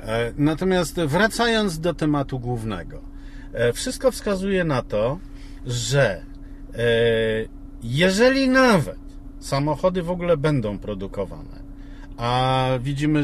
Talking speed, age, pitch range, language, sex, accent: 85 wpm, 50-69, 115-160 Hz, Polish, male, native